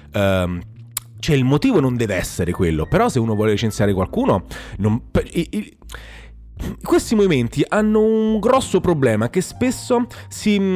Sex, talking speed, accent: male, 130 wpm, native